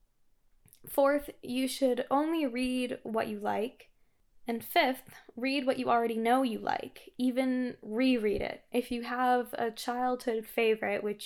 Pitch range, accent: 220-255 Hz, American